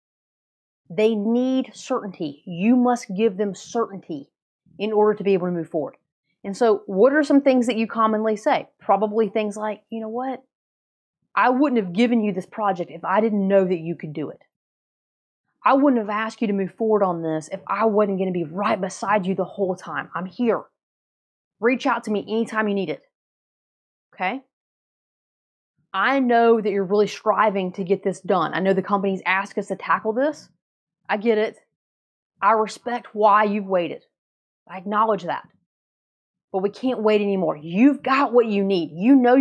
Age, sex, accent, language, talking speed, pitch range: 30-49, female, American, English, 185 wpm, 190-245 Hz